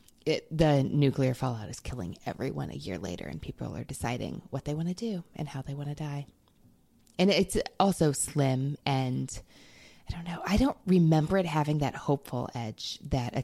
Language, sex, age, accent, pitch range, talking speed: English, female, 20-39, American, 135-180 Hz, 190 wpm